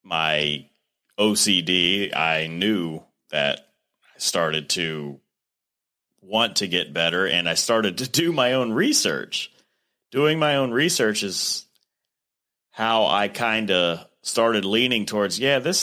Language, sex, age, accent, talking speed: English, male, 30-49, American, 135 wpm